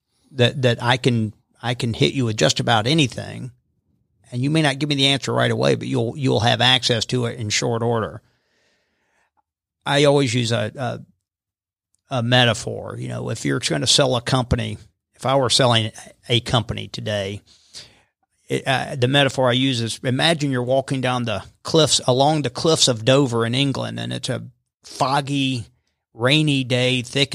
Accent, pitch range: American, 115-135 Hz